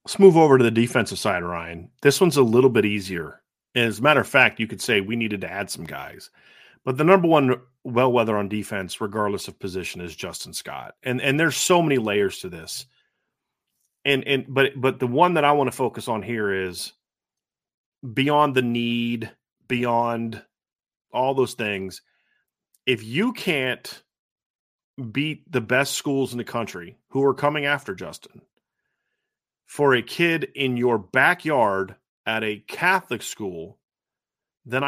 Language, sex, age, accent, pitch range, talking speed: English, male, 30-49, American, 115-140 Hz, 170 wpm